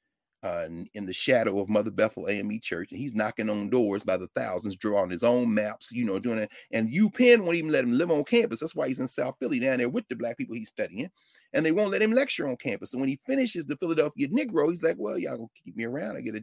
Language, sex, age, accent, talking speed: English, male, 40-59, American, 270 wpm